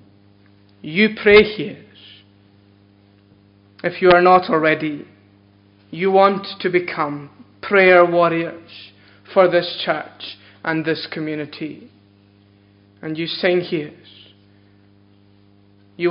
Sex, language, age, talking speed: male, English, 20-39, 95 wpm